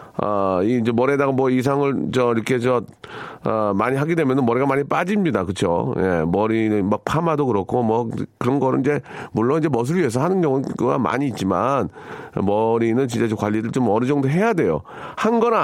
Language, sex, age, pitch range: Korean, male, 40-59, 105-140 Hz